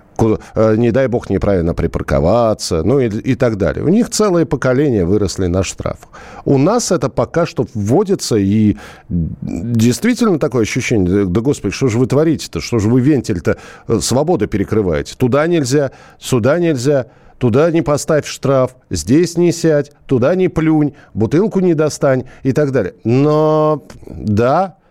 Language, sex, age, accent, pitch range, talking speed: Russian, male, 50-69, native, 105-145 Hz, 145 wpm